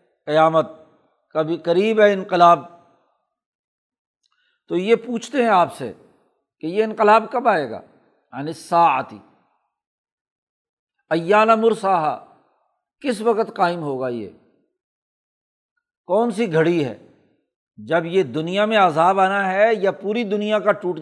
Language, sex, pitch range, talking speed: Urdu, male, 165-225 Hz, 120 wpm